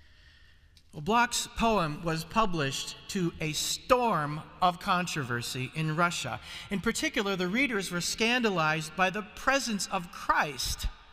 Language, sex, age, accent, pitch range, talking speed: English, male, 40-59, American, 140-225 Hz, 120 wpm